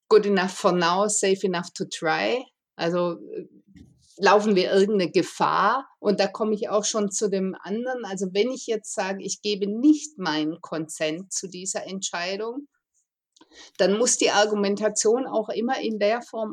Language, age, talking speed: German, 50-69, 160 wpm